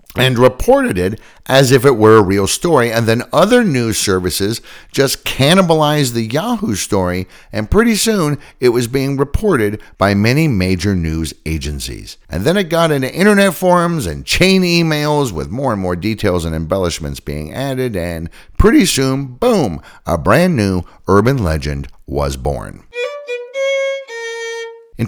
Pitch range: 85-145 Hz